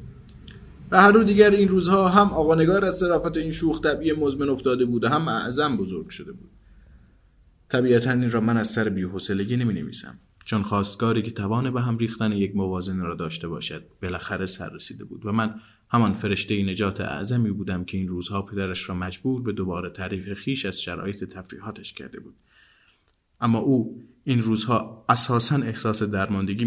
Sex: male